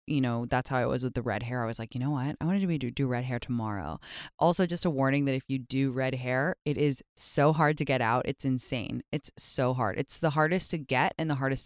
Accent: American